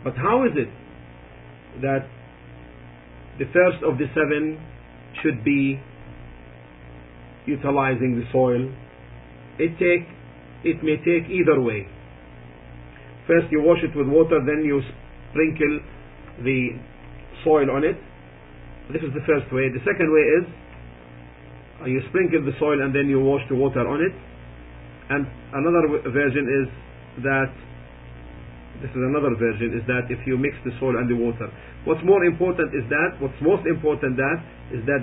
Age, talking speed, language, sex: 50-69, 145 wpm, English, male